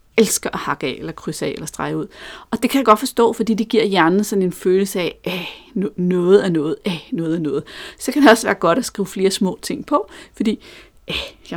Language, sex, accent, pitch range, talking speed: Danish, female, native, 175-230 Hz, 230 wpm